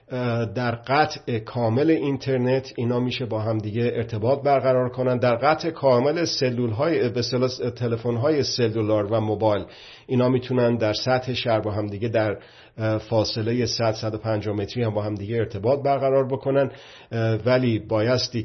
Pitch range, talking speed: 110-130 Hz, 150 wpm